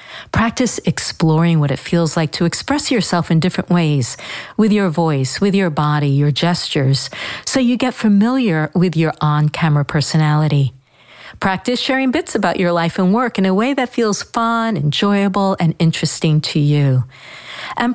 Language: English